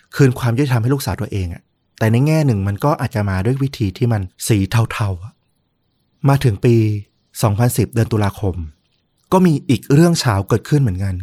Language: Thai